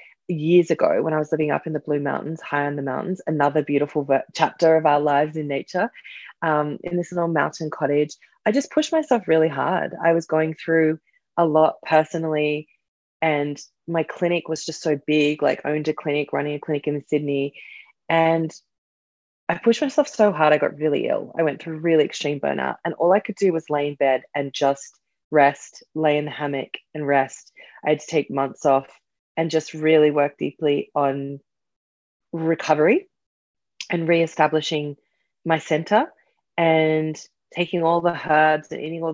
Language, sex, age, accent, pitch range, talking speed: English, female, 20-39, Australian, 145-170 Hz, 180 wpm